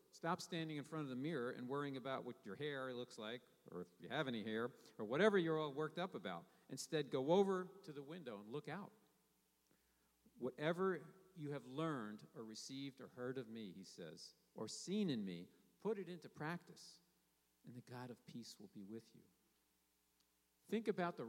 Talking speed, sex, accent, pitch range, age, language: 195 wpm, male, American, 110-160 Hz, 50-69, English